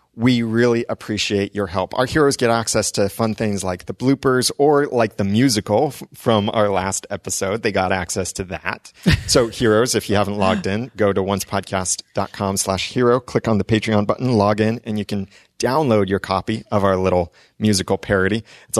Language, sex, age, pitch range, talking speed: English, male, 30-49, 100-125 Hz, 190 wpm